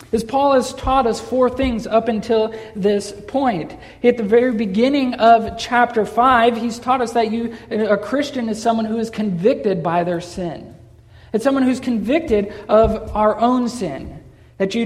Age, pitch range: 40-59, 190-230 Hz